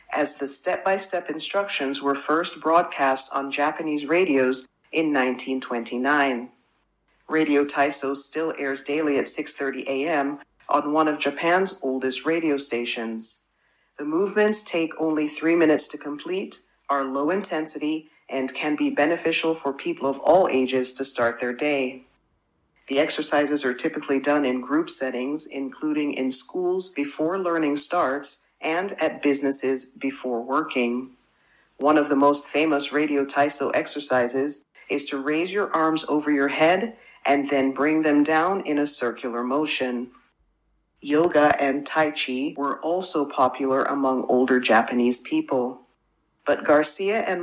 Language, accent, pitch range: Japanese, American, 135-155 Hz